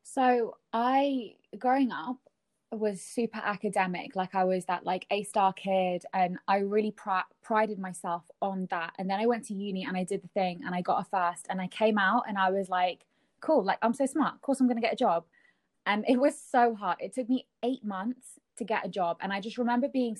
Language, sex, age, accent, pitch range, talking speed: English, female, 20-39, British, 190-225 Hz, 225 wpm